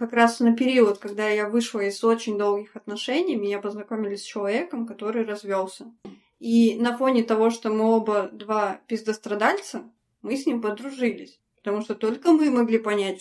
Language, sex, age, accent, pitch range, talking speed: Russian, female, 20-39, native, 210-255 Hz, 165 wpm